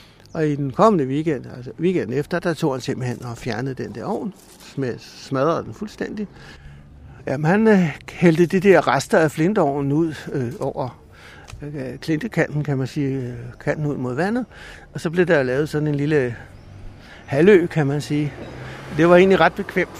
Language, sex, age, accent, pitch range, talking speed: Danish, male, 60-79, native, 130-175 Hz, 170 wpm